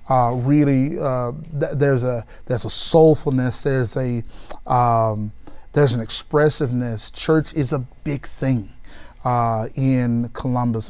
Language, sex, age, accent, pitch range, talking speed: English, male, 30-49, American, 125-150 Hz, 125 wpm